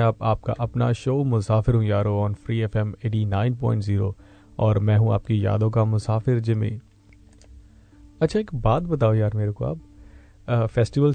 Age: 30-49